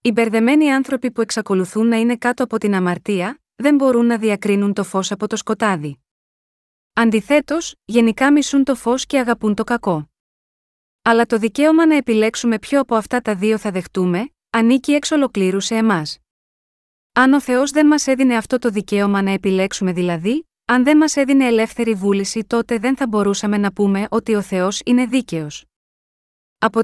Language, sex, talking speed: Greek, female, 170 wpm